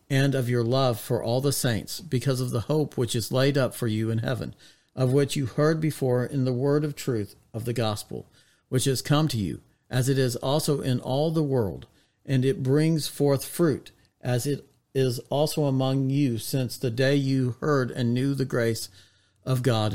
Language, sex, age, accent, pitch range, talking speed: English, male, 50-69, American, 115-145 Hz, 205 wpm